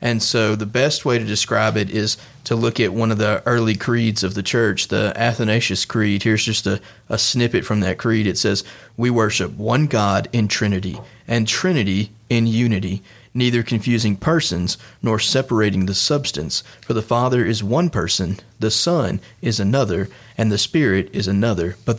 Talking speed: 180 wpm